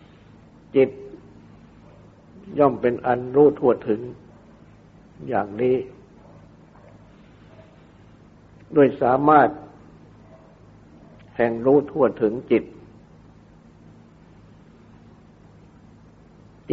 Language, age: Thai, 60-79